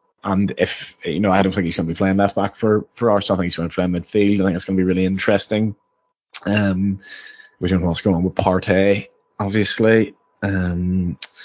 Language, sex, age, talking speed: English, male, 20-39, 225 wpm